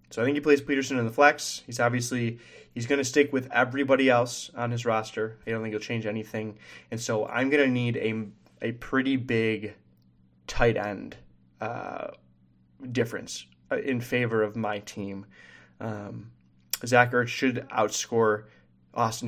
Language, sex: English, male